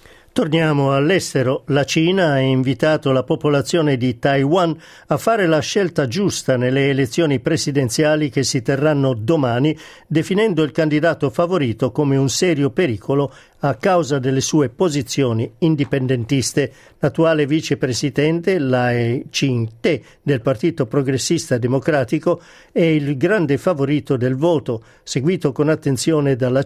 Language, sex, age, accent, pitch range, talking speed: Italian, male, 50-69, native, 135-165 Hz, 120 wpm